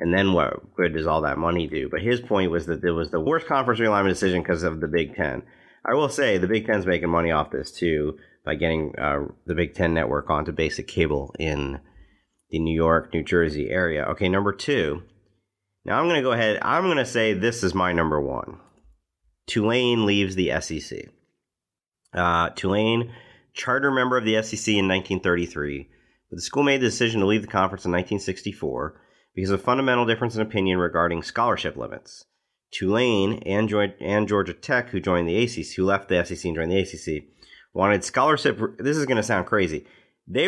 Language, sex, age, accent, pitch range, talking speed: English, male, 40-59, American, 85-115 Hz, 195 wpm